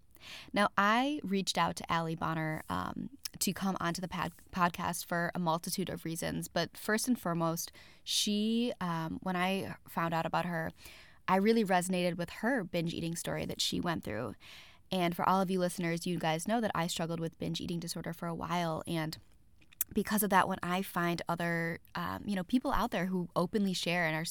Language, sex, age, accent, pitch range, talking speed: English, female, 20-39, American, 165-190 Hz, 200 wpm